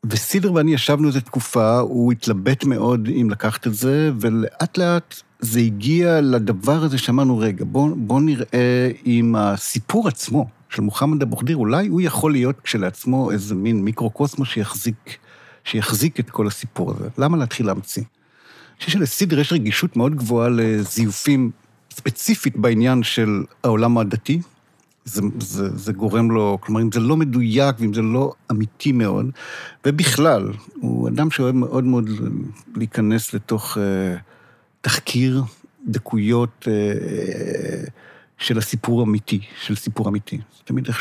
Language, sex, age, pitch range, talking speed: Hebrew, male, 50-69, 110-145 Hz, 140 wpm